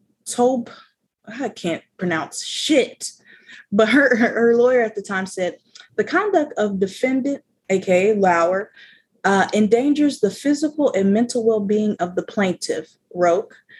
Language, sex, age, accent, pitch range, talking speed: English, female, 20-39, American, 190-240 Hz, 135 wpm